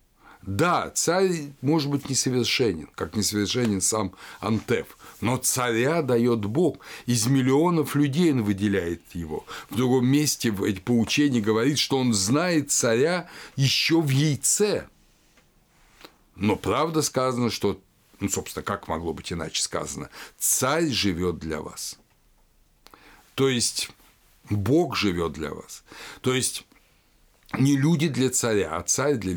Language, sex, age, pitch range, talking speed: Russian, male, 60-79, 90-130 Hz, 125 wpm